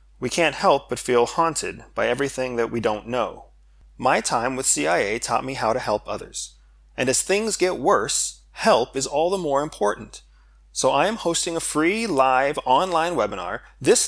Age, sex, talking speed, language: 30-49, male, 185 wpm, English